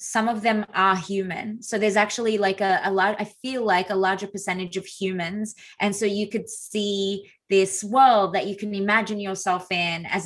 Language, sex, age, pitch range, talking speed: English, female, 20-39, 190-215 Hz, 200 wpm